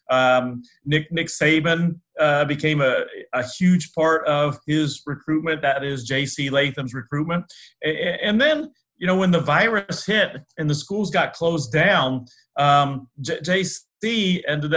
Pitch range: 130-165 Hz